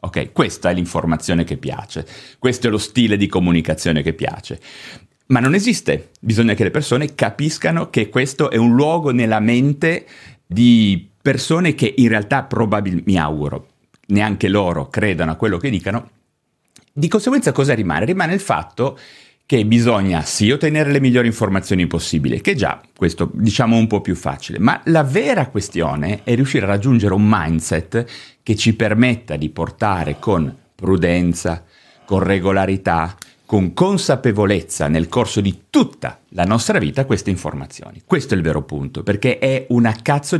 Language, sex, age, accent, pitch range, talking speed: Italian, male, 30-49, native, 90-130 Hz, 155 wpm